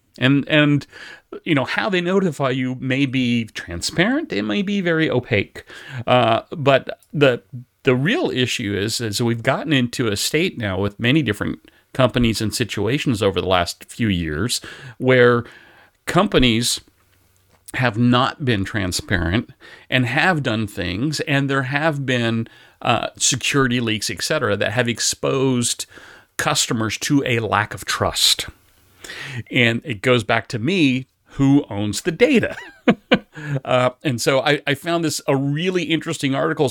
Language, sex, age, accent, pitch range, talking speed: English, male, 40-59, American, 110-140 Hz, 145 wpm